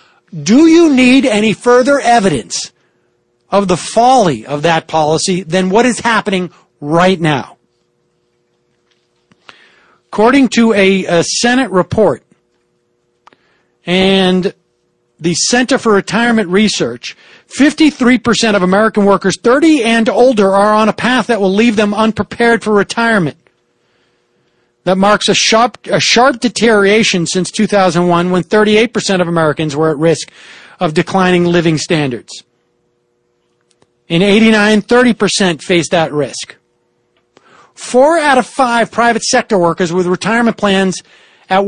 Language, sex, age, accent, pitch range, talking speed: English, male, 40-59, American, 175-230 Hz, 120 wpm